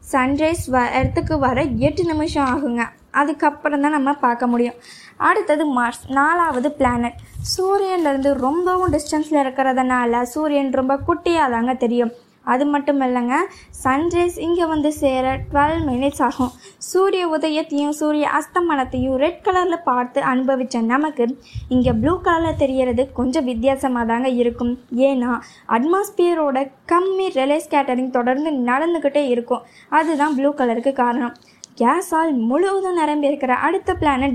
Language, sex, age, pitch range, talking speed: Tamil, female, 20-39, 255-315 Hz, 120 wpm